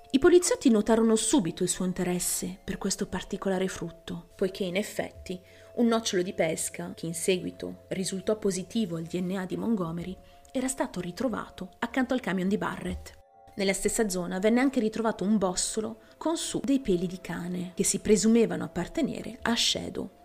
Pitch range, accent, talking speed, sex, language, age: 180-235 Hz, native, 165 wpm, female, Italian, 30-49